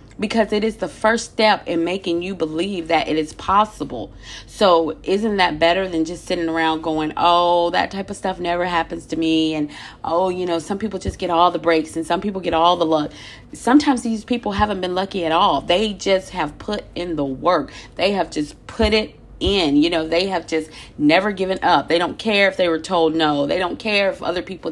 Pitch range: 160-205 Hz